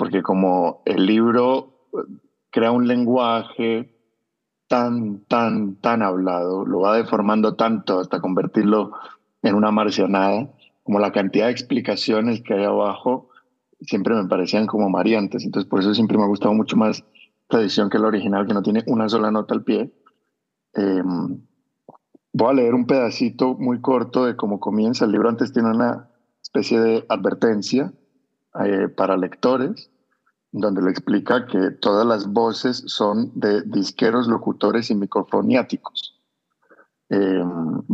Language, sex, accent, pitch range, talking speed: Spanish, male, Mexican, 105-120 Hz, 145 wpm